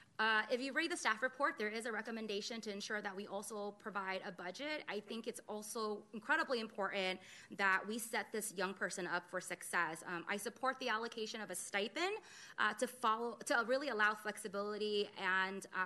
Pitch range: 195-245 Hz